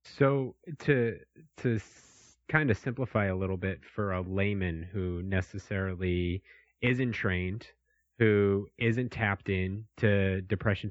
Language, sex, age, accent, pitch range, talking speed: English, male, 30-49, American, 90-110 Hz, 120 wpm